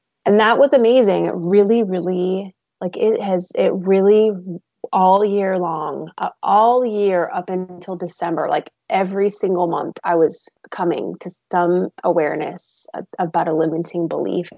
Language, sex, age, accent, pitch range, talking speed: English, female, 20-39, American, 170-205 Hz, 140 wpm